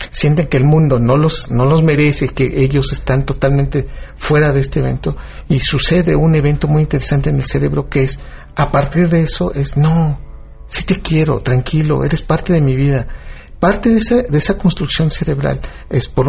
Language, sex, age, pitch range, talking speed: Spanish, male, 50-69, 130-160 Hz, 195 wpm